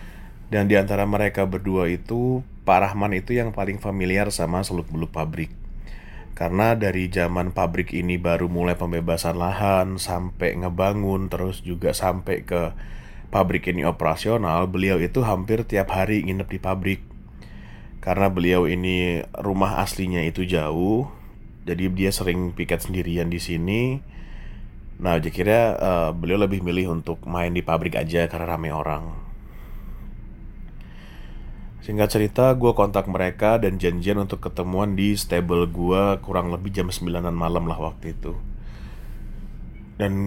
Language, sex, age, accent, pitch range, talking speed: Indonesian, male, 20-39, native, 85-100 Hz, 135 wpm